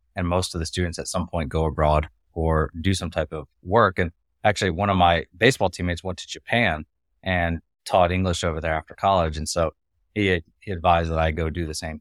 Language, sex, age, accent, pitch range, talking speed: English, male, 20-39, American, 80-90 Hz, 220 wpm